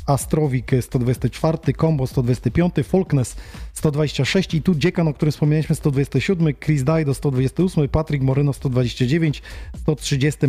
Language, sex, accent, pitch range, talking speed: Polish, male, native, 135-165 Hz, 115 wpm